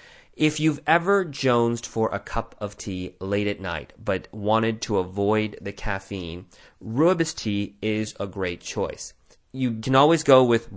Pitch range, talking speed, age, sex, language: 100-135 Hz, 160 wpm, 30-49, male, English